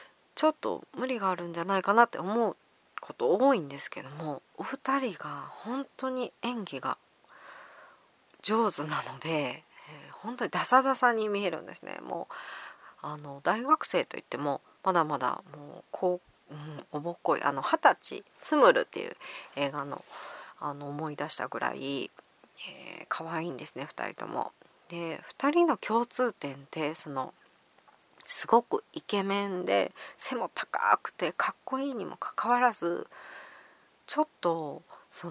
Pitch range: 155-245 Hz